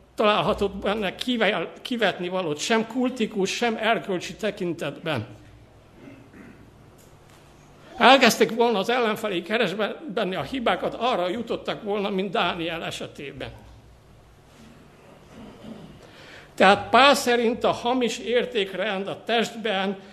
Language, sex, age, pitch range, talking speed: Hungarian, male, 60-79, 175-225 Hz, 90 wpm